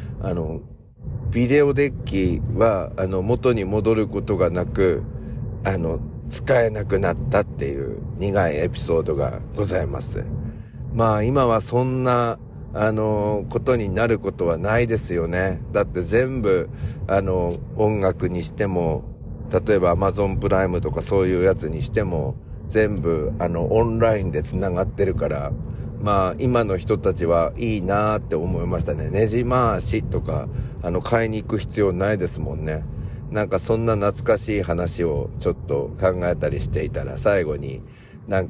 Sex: male